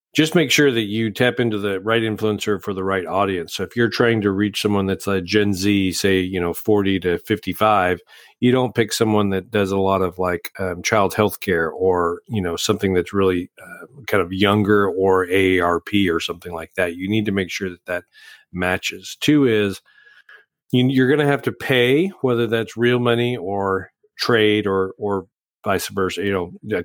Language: English